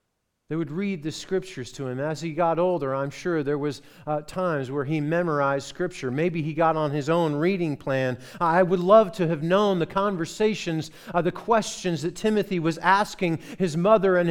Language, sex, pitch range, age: English, male, 135-175 Hz, 40-59